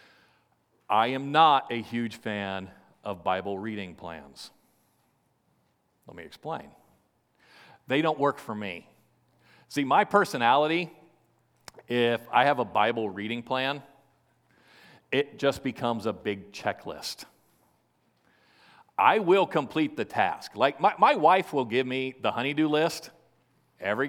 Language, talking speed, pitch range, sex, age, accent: English, 125 wpm, 115-145 Hz, male, 40-59, American